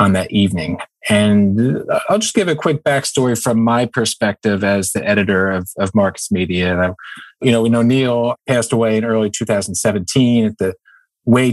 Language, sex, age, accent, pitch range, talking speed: English, male, 40-59, American, 105-125 Hz, 160 wpm